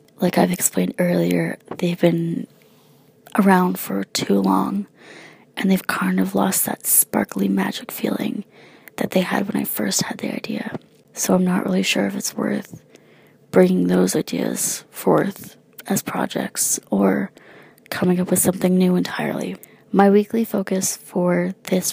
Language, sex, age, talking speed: English, female, 20-39, 150 wpm